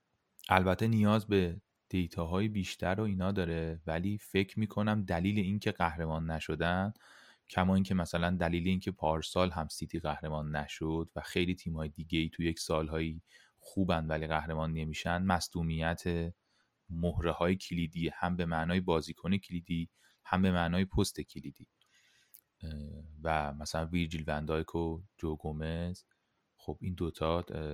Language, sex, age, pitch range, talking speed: Persian, male, 30-49, 80-100 Hz, 130 wpm